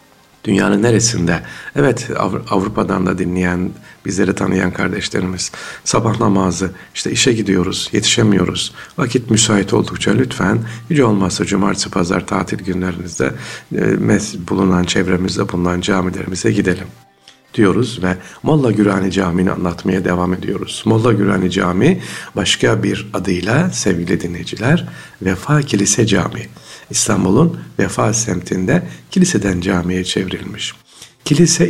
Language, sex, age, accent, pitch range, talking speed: Turkish, male, 60-79, native, 90-115 Hz, 105 wpm